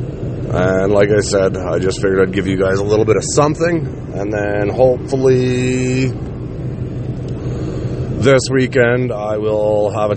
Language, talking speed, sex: English, 150 wpm, male